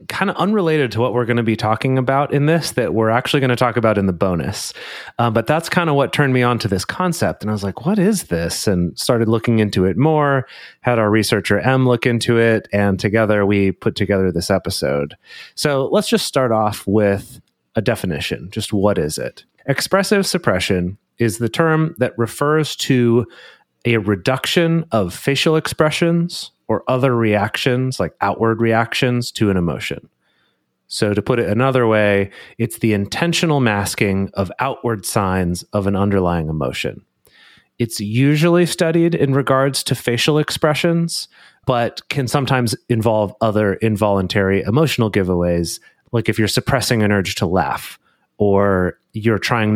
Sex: male